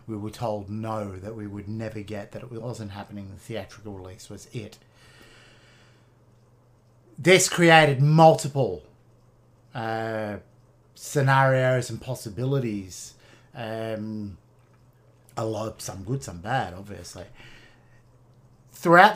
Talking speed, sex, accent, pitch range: 105 wpm, male, Australian, 105-130 Hz